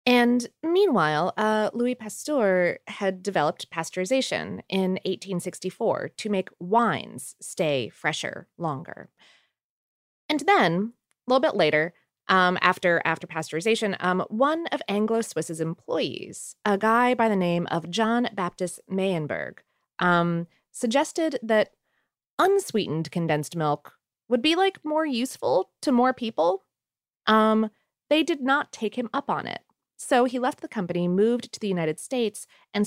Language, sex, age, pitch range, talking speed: English, female, 20-39, 180-250 Hz, 135 wpm